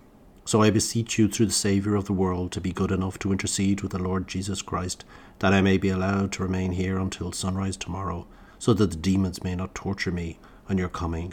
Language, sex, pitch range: English, male, 90-100 Hz